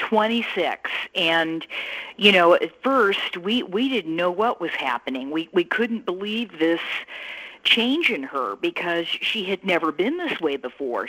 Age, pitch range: 50-69, 155-215 Hz